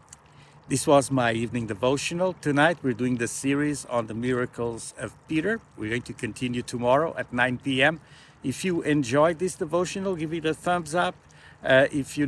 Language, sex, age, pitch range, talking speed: English, male, 60-79, 125-155 Hz, 175 wpm